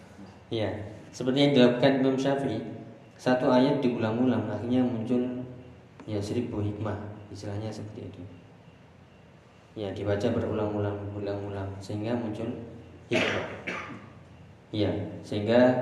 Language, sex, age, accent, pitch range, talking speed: Indonesian, male, 20-39, native, 105-120 Hz, 100 wpm